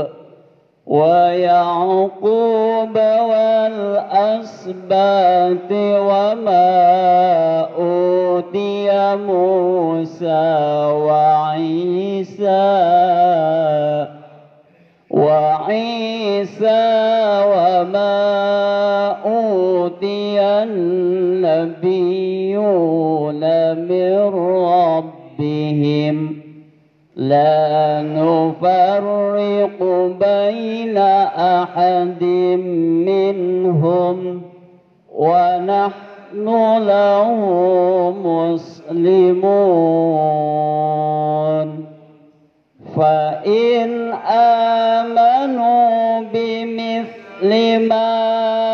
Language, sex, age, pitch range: Malay, male, 40-59, 165-205 Hz